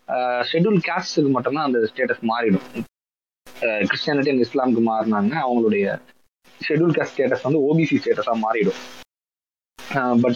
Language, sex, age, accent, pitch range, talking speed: Tamil, male, 20-39, native, 120-170 Hz, 110 wpm